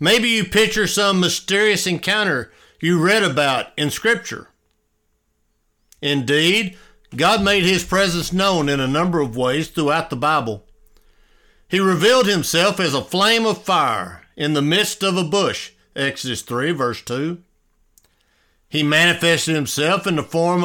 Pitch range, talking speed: 125-175 Hz, 140 wpm